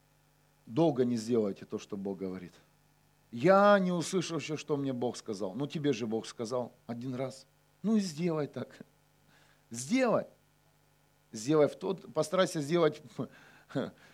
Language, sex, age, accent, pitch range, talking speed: Russian, male, 40-59, native, 120-155 Hz, 135 wpm